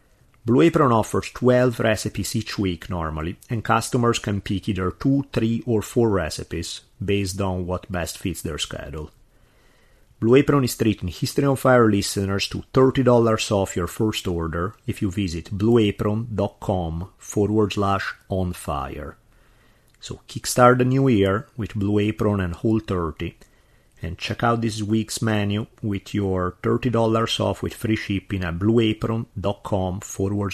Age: 30-49